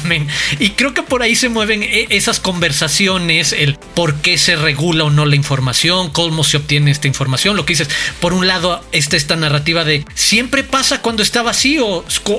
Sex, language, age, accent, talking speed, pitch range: male, Spanish, 40-59, Mexican, 190 wpm, 160-205 Hz